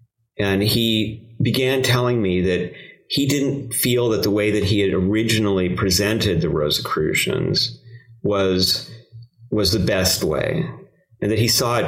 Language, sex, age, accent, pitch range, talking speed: English, male, 30-49, American, 95-115 Hz, 145 wpm